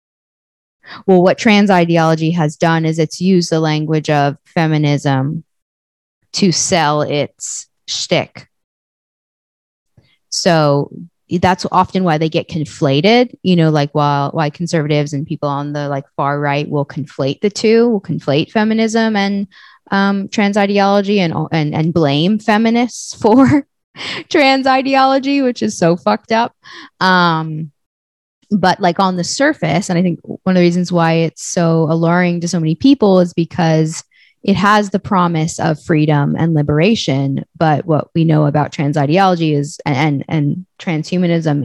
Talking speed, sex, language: 150 wpm, female, English